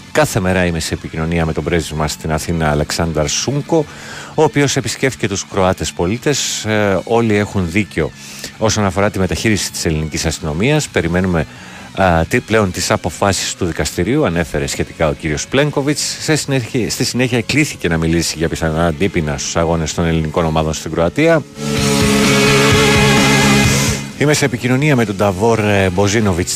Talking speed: 145 wpm